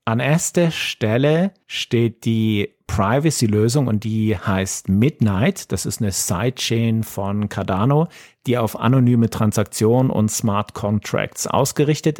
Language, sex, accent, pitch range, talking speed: German, male, German, 105-120 Hz, 120 wpm